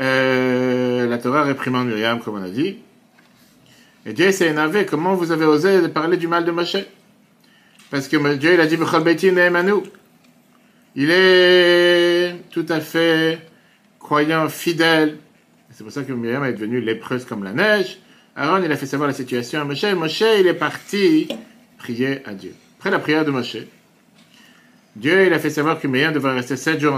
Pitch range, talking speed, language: 130-190 Hz, 175 wpm, French